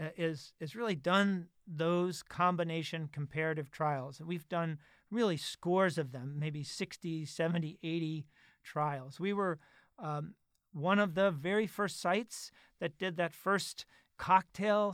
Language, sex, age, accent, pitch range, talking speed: English, male, 40-59, American, 160-195 Hz, 135 wpm